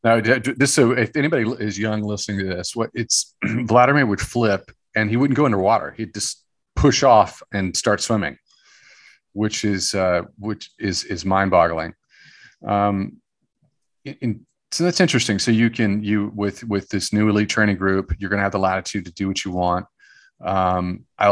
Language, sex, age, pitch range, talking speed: English, male, 40-59, 100-120 Hz, 180 wpm